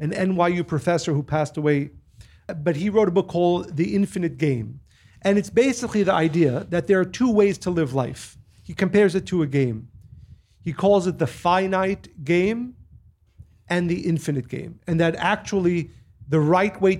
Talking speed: 175 wpm